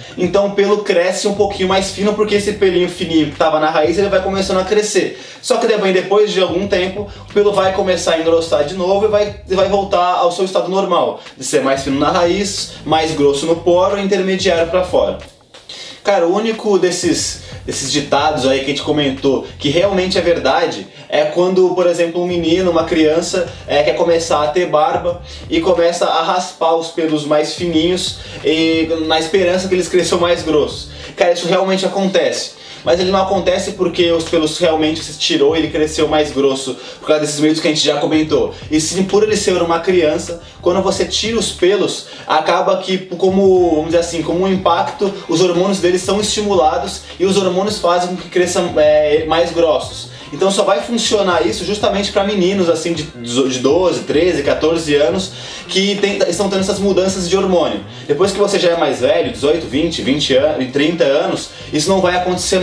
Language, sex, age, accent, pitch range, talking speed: Portuguese, male, 20-39, Brazilian, 155-195 Hz, 195 wpm